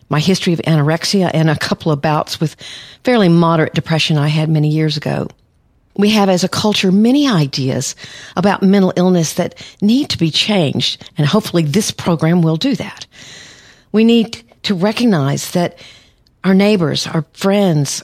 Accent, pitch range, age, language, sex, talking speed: American, 150-195 Hz, 50-69, English, female, 165 wpm